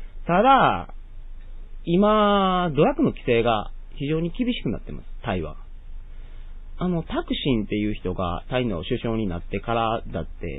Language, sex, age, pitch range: Japanese, male, 30-49, 95-125 Hz